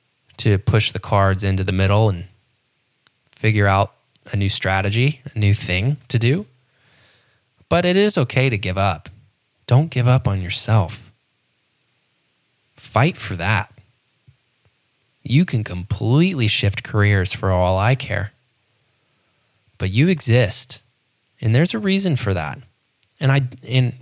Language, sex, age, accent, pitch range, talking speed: English, male, 10-29, American, 105-130 Hz, 135 wpm